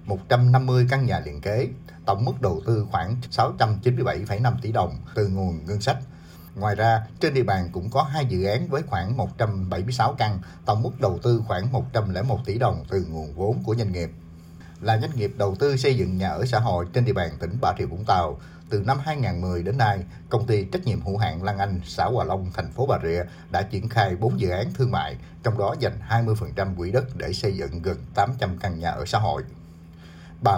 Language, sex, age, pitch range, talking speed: Vietnamese, male, 60-79, 90-125 Hz, 220 wpm